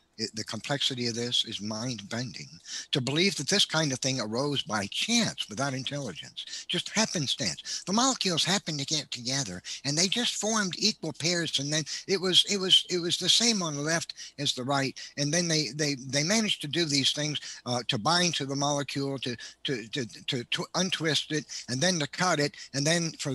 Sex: male